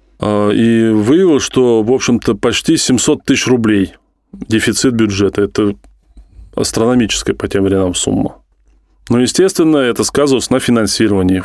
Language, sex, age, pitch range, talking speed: Russian, male, 20-39, 100-125 Hz, 120 wpm